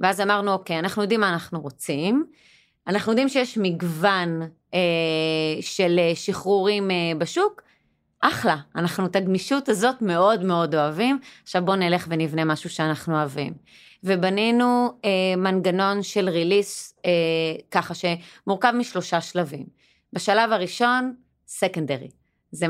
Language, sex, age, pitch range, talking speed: Hebrew, female, 30-49, 170-215 Hz, 120 wpm